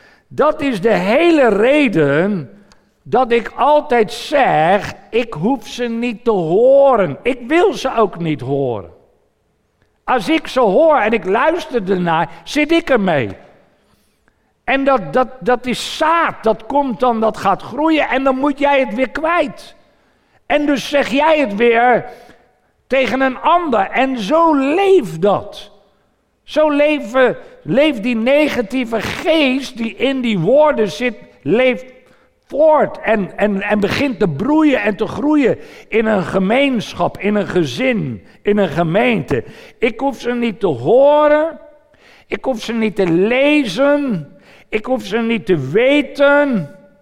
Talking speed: 140 wpm